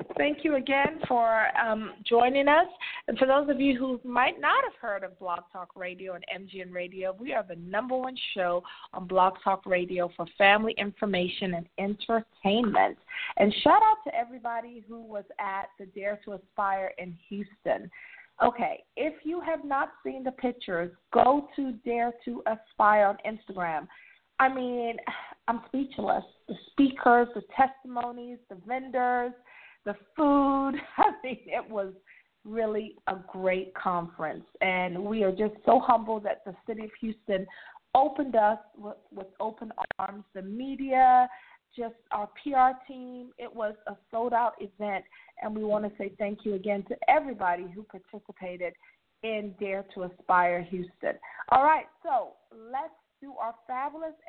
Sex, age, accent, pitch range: female, 30-49, American, 195-255 Hz